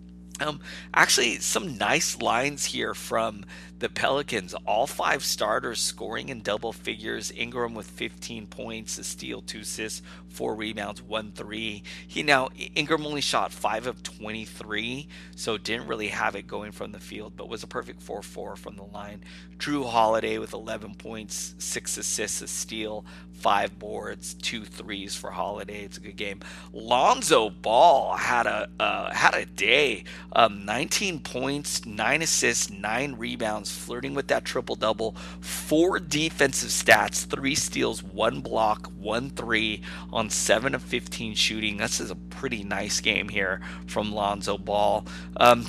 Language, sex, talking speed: English, male, 150 wpm